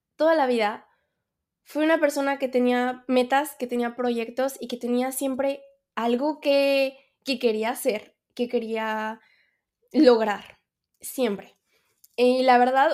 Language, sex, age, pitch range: Spanish, female, 20-39, 220-270 Hz